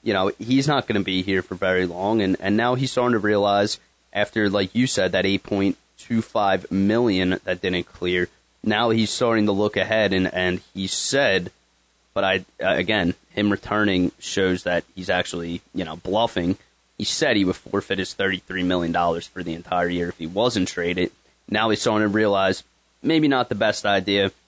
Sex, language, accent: male, English, American